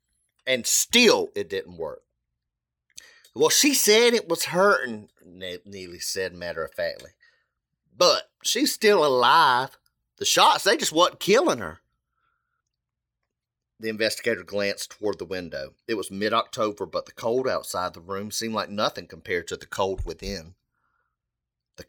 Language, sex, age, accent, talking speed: English, male, 40-59, American, 135 wpm